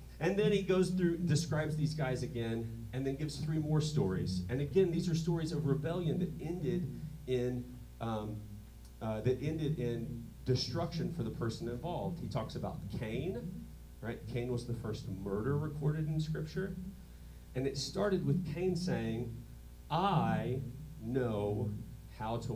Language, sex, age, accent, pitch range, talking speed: English, male, 40-59, American, 110-155 Hz, 145 wpm